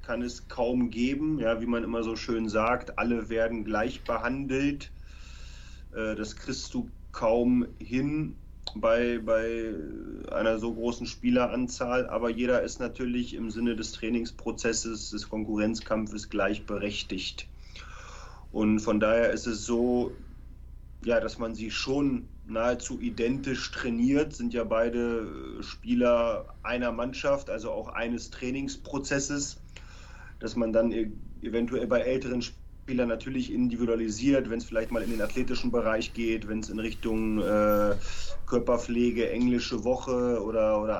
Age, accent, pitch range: 30-49, German, 110-120 Hz